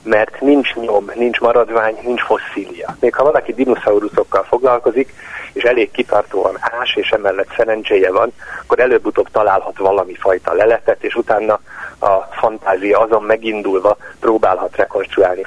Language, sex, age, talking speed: Hungarian, male, 40-59, 130 wpm